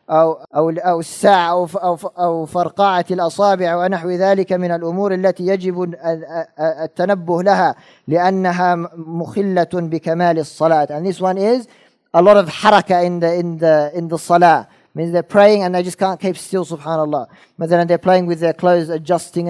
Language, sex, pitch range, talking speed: English, male, 160-180 Hz, 145 wpm